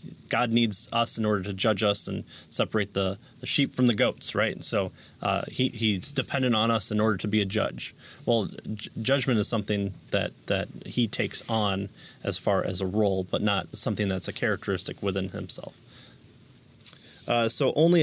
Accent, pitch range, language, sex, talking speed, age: American, 105-120 Hz, English, male, 185 wpm, 30-49